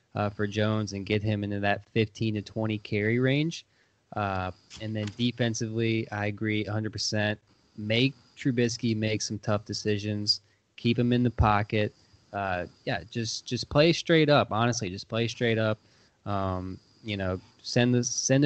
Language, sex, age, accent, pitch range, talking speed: English, male, 20-39, American, 105-115 Hz, 165 wpm